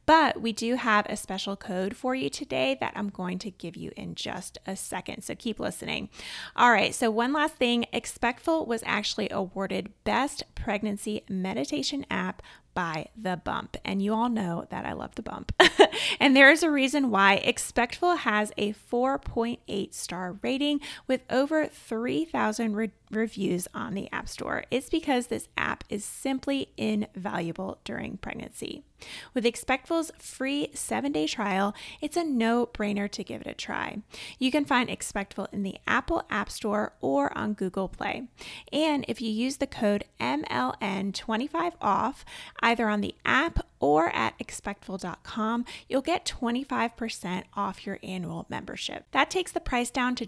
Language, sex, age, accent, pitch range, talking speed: English, female, 30-49, American, 200-270 Hz, 155 wpm